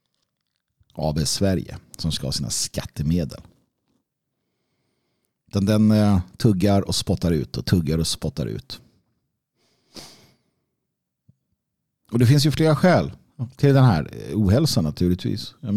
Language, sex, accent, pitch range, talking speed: Swedish, male, native, 85-110 Hz, 115 wpm